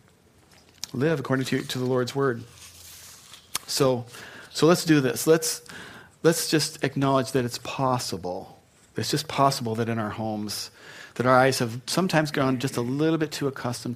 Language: English